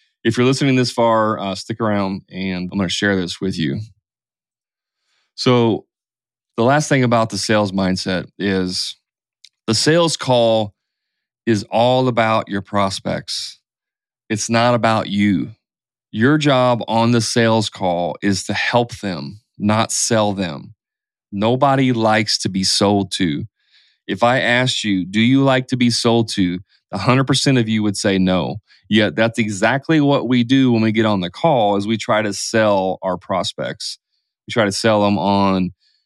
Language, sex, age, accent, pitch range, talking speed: English, male, 30-49, American, 105-120 Hz, 165 wpm